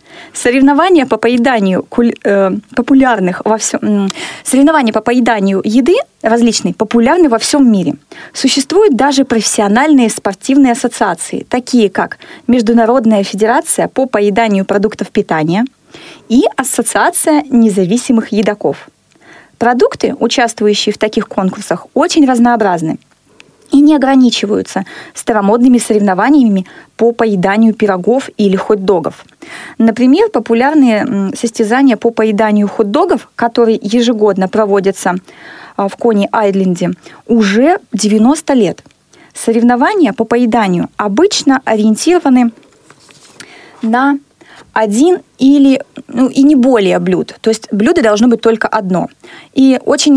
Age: 20-39